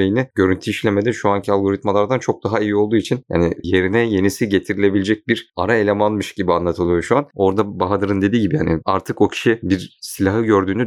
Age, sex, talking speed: 30-49, male, 180 wpm